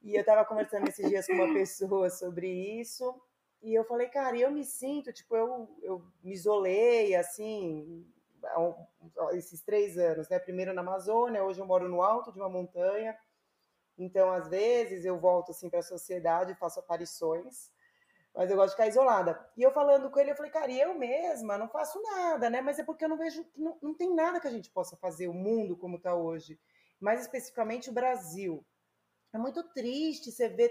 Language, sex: Portuguese, female